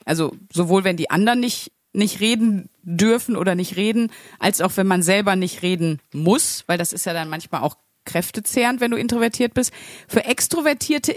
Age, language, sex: 30-49, German, female